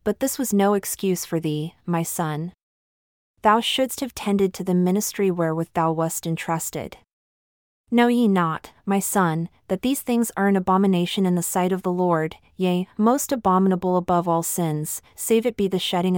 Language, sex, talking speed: English, female, 180 wpm